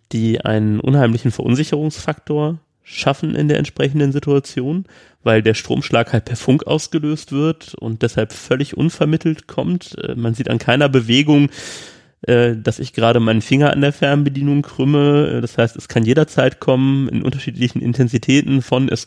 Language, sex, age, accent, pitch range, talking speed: German, male, 30-49, German, 115-145 Hz, 150 wpm